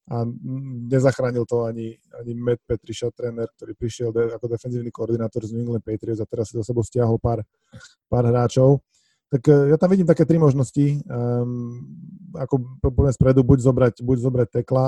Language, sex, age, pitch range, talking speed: Slovak, male, 20-39, 120-130 Hz, 175 wpm